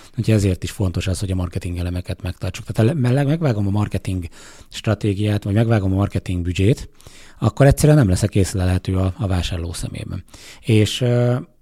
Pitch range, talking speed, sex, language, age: 90-110 Hz, 160 wpm, male, Hungarian, 30-49